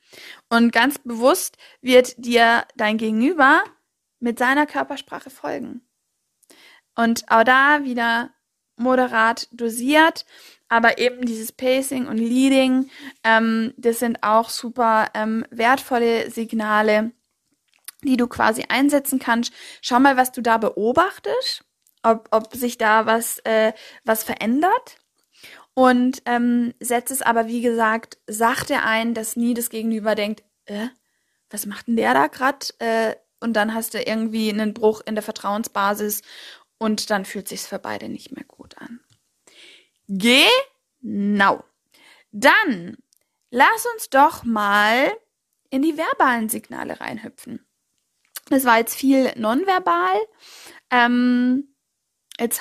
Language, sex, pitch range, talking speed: German, female, 225-265 Hz, 125 wpm